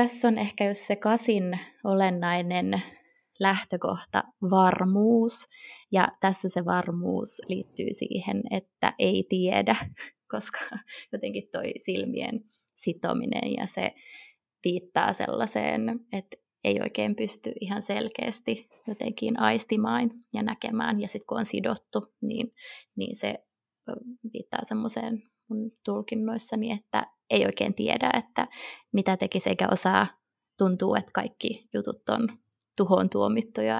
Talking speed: 115 wpm